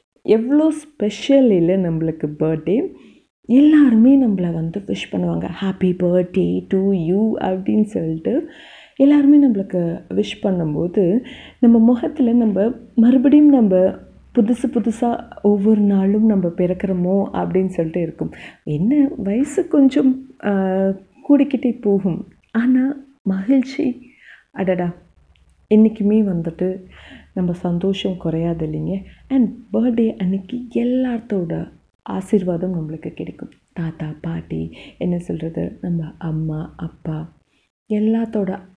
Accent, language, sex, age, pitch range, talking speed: native, Tamil, female, 30-49, 170-235 Hz, 95 wpm